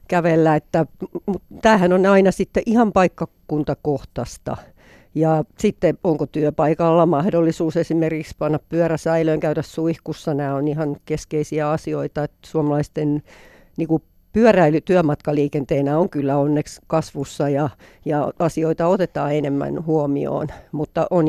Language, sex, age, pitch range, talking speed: Finnish, female, 50-69, 150-170 Hz, 110 wpm